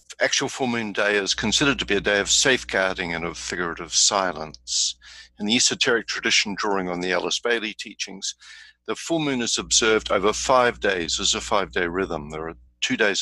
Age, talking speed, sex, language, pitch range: 60-79, 190 wpm, male, English, 85-105 Hz